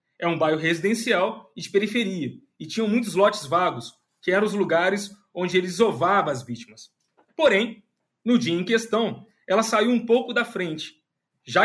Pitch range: 185-230 Hz